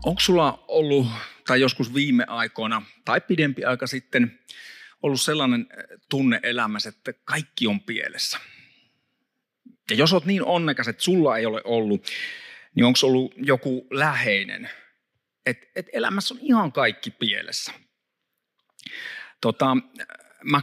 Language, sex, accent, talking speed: Finnish, male, native, 120 wpm